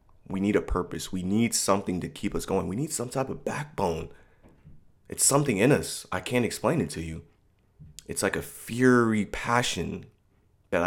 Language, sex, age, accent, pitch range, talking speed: English, male, 30-49, American, 90-105 Hz, 180 wpm